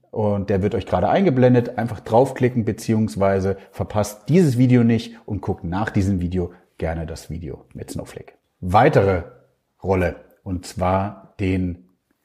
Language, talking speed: German, 135 wpm